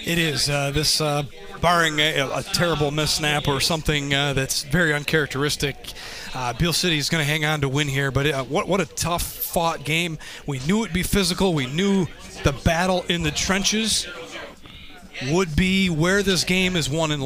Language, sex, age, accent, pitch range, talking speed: English, male, 30-49, American, 150-180 Hz, 200 wpm